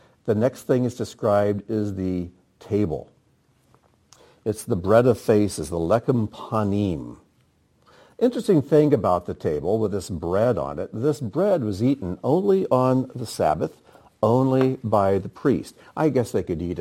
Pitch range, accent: 95-120 Hz, American